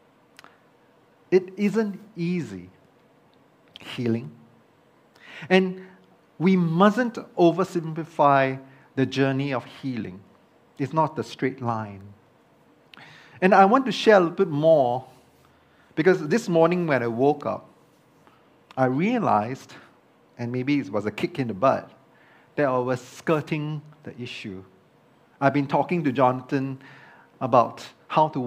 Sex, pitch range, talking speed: male, 120-165 Hz, 120 wpm